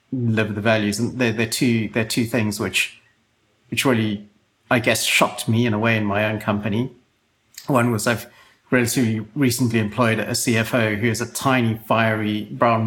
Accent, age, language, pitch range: British, 40-59, English, 110-125 Hz